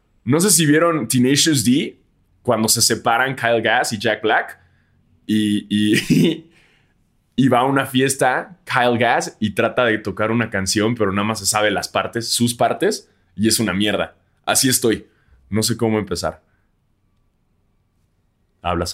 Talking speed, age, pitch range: 150 wpm, 20-39, 105-165 Hz